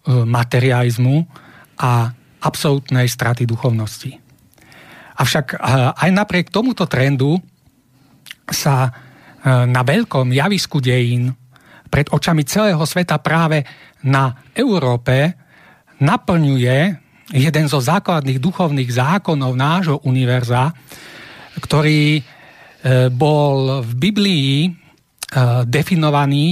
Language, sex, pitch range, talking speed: Slovak, male, 130-170 Hz, 80 wpm